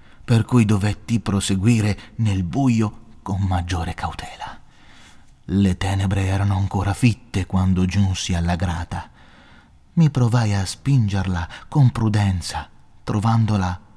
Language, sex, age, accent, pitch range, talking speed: Italian, male, 30-49, native, 85-105 Hz, 105 wpm